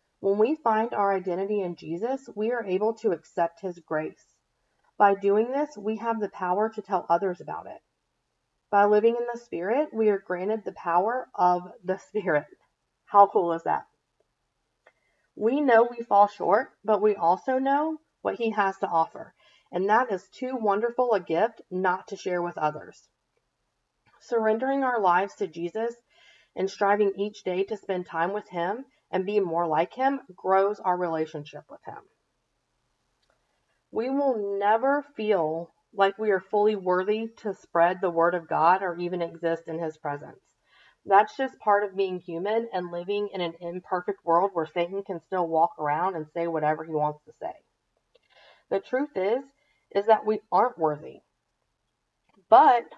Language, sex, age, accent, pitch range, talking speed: English, female, 40-59, American, 175-220 Hz, 170 wpm